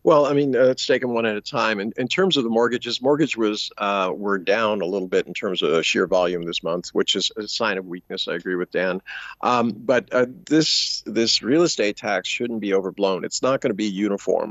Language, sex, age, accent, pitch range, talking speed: English, male, 50-69, American, 95-125 Hz, 250 wpm